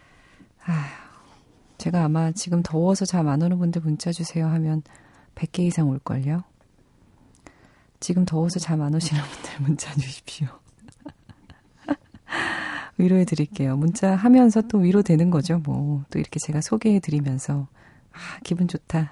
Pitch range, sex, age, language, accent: 140-185 Hz, female, 40-59, Korean, native